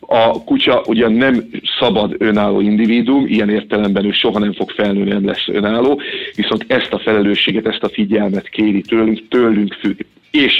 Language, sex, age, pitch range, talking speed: Hungarian, male, 50-69, 100-110 Hz, 165 wpm